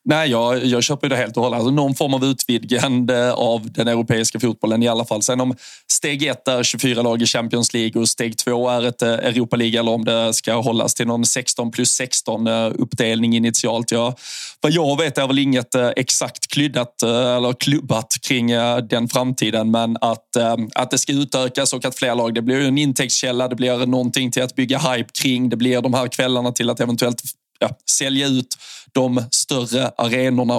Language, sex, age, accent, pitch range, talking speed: Swedish, male, 20-39, native, 120-130 Hz, 195 wpm